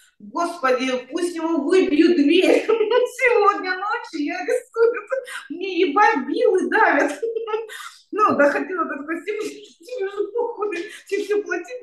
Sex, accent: female, native